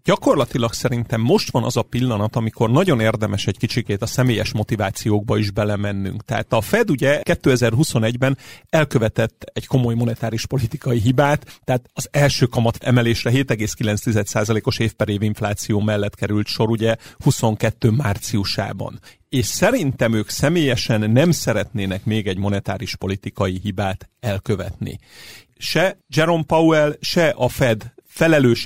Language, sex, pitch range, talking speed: Hungarian, male, 110-135 Hz, 130 wpm